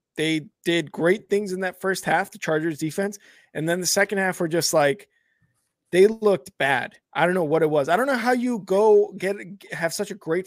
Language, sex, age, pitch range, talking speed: English, male, 20-39, 155-205 Hz, 225 wpm